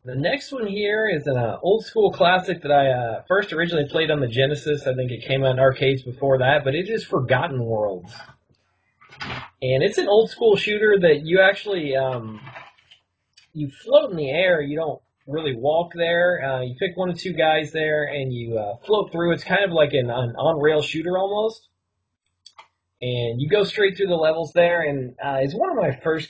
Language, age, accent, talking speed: English, 30-49, American, 205 wpm